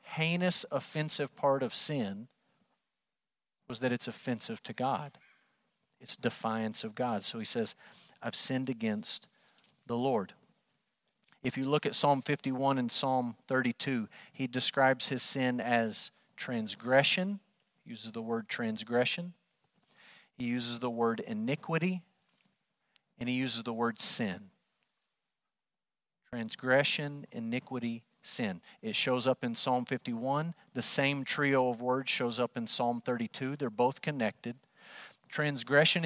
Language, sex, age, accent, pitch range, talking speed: English, male, 40-59, American, 125-150 Hz, 130 wpm